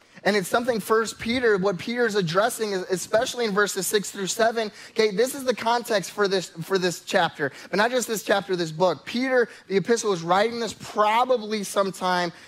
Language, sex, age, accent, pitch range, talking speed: English, male, 20-39, American, 175-225 Hz, 190 wpm